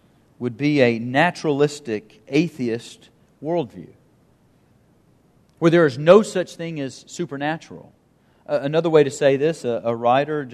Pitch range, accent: 115-155 Hz, American